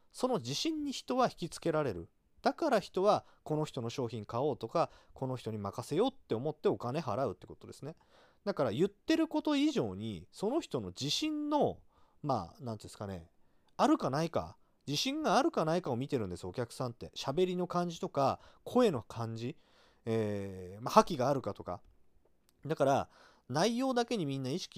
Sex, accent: male, native